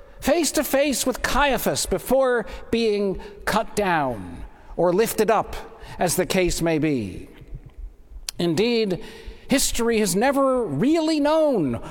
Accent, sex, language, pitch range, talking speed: American, male, English, 205-285 Hz, 115 wpm